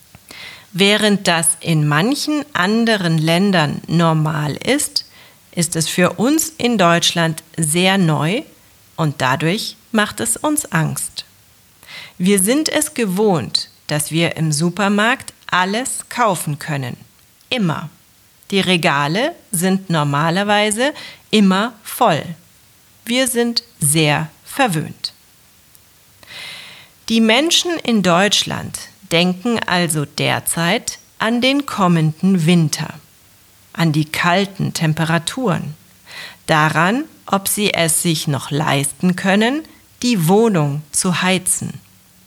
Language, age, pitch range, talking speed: German, 40-59, 160-225 Hz, 100 wpm